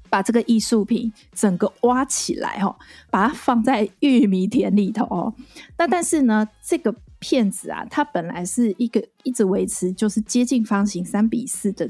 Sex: female